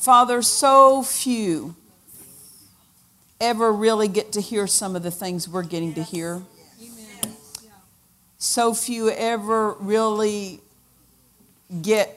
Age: 50-69